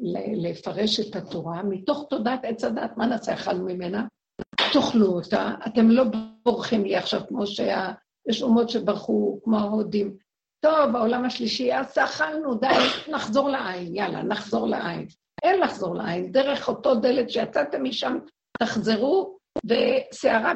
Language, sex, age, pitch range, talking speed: Hebrew, female, 60-79, 195-245 Hz, 135 wpm